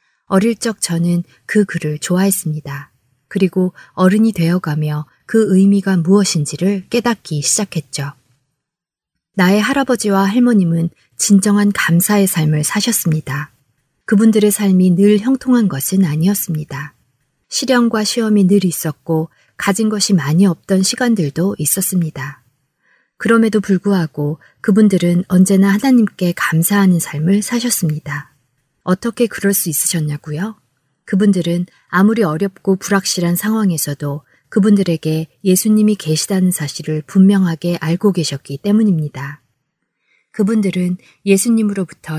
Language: Korean